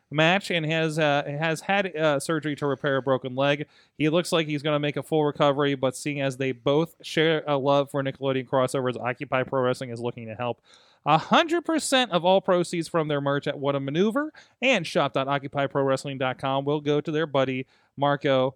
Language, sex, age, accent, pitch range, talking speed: English, male, 30-49, American, 130-180 Hz, 195 wpm